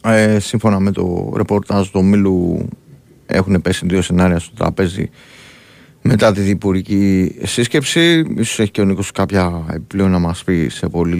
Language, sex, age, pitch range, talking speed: Greek, male, 30-49, 95-115 Hz, 150 wpm